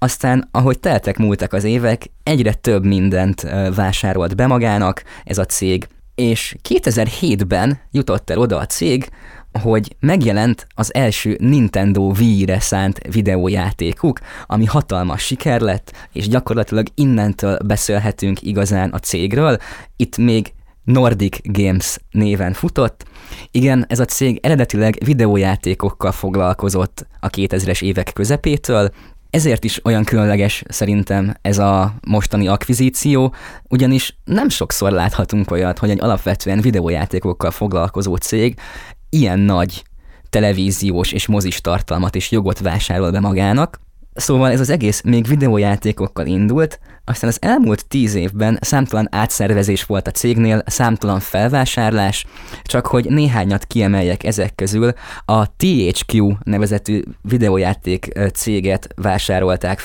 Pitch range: 95-120 Hz